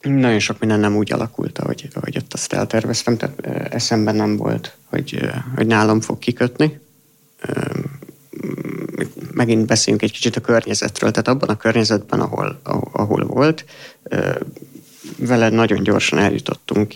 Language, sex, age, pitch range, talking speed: Hungarian, male, 50-69, 110-125 Hz, 130 wpm